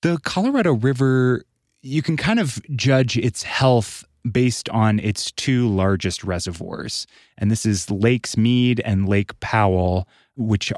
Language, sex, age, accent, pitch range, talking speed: English, male, 20-39, American, 100-130 Hz, 140 wpm